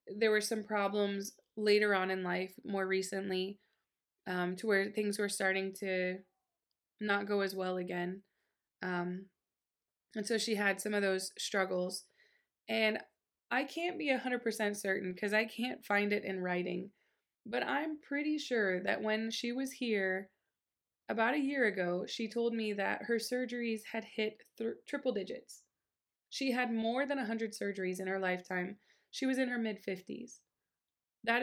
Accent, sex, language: American, female, English